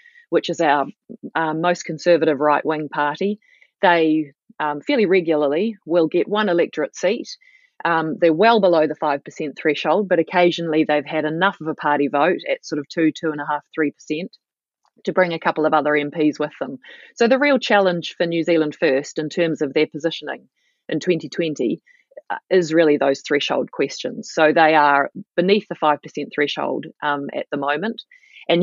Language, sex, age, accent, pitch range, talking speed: English, female, 30-49, Australian, 150-175 Hz, 180 wpm